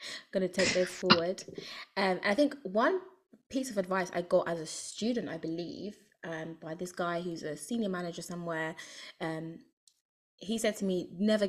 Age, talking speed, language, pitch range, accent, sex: 20-39, 180 wpm, English, 170-200 Hz, British, female